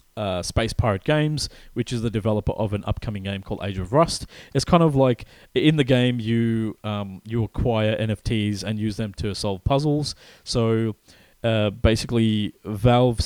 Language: English